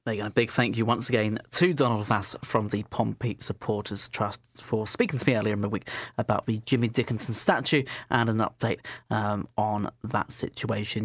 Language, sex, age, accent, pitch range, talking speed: English, male, 30-49, British, 110-140 Hz, 185 wpm